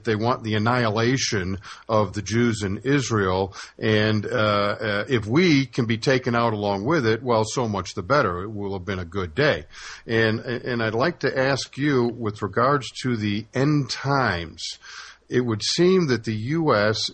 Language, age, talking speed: English, 50-69, 180 wpm